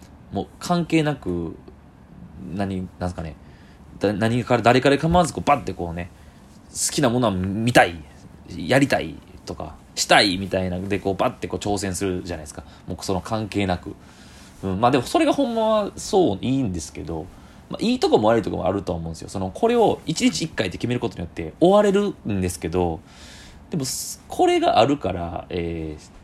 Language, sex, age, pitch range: Japanese, male, 20-39, 90-135 Hz